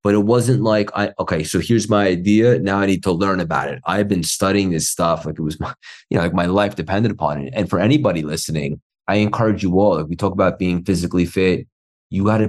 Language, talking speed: English, 255 wpm